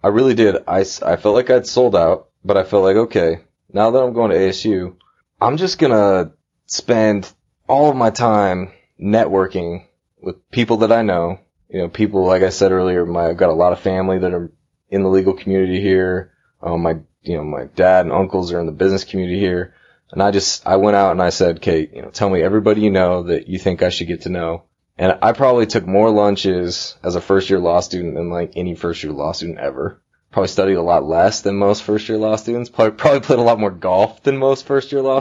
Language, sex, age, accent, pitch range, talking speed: English, male, 20-39, American, 90-110 Hz, 225 wpm